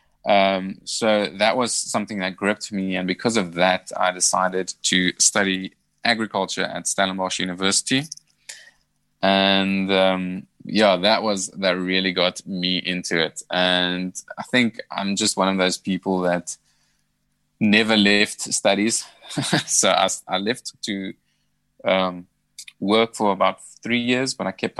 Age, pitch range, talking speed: 20-39, 90-100 Hz, 140 wpm